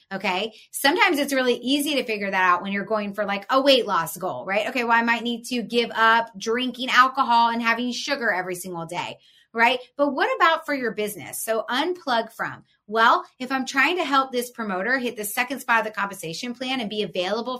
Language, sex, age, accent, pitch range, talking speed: English, female, 20-39, American, 210-270 Hz, 220 wpm